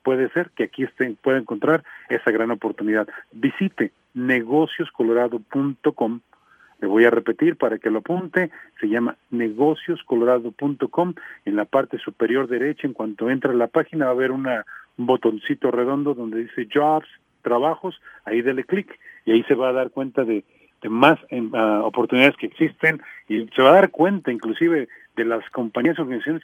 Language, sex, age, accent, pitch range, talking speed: English, male, 40-59, Mexican, 120-160 Hz, 165 wpm